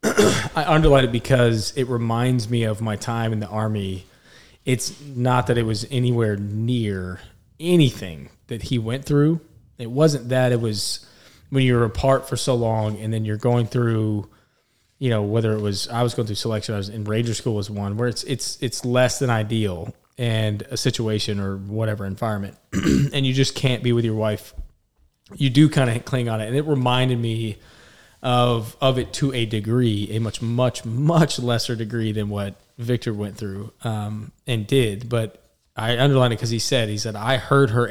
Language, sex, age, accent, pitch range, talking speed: English, male, 20-39, American, 105-125 Hz, 195 wpm